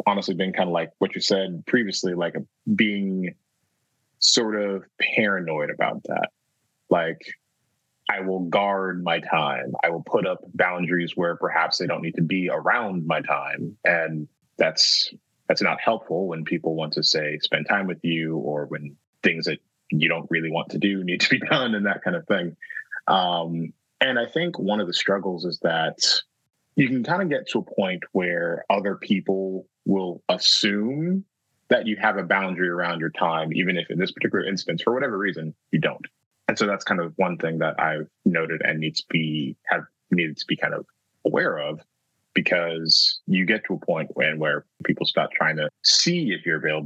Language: English